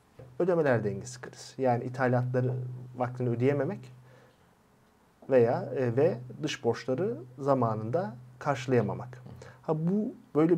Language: Turkish